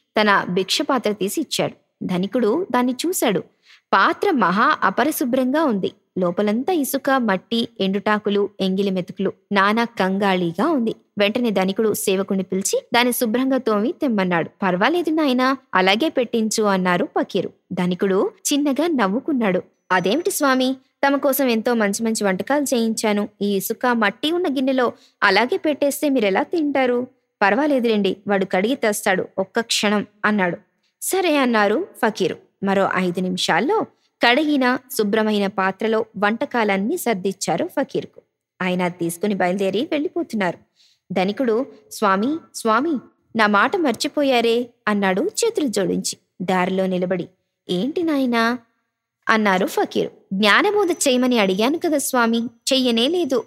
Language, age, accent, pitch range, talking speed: Telugu, 20-39, native, 195-270 Hz, 115 wpm